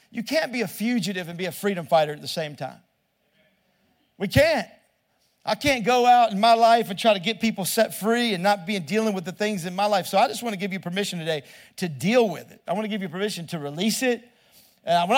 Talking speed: 255 wpm